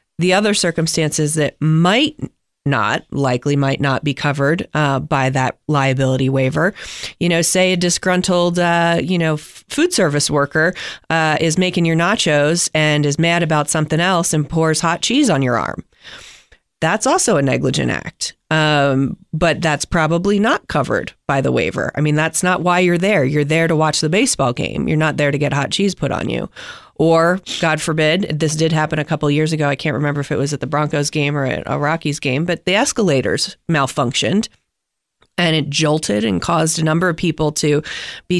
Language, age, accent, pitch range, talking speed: English, 30-49, American, 150-180 Hz, 195 wpm